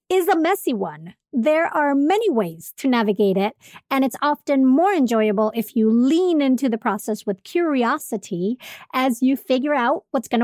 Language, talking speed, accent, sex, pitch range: English, 170 wpm, American, female, 220-280 Hz